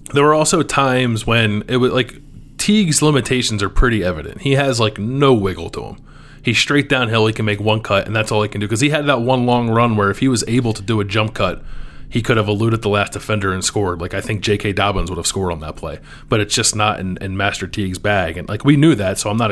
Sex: male